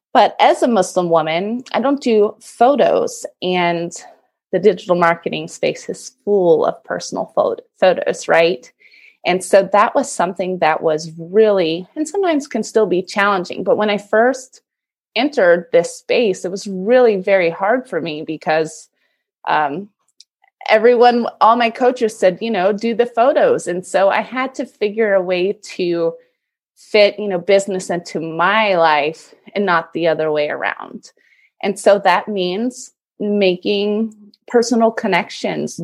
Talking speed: 150 wpm